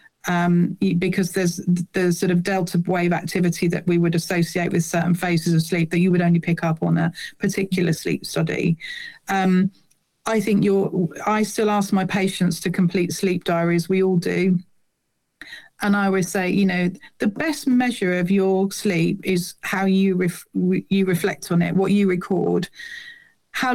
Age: 40-59